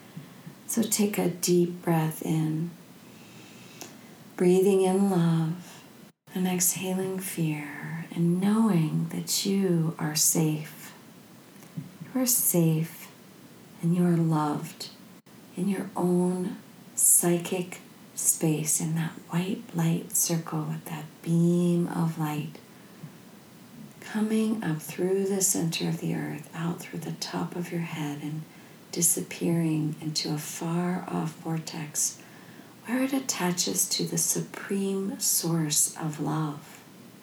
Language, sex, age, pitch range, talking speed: English, female, 40-59, 160-190 Hz, 115 wpm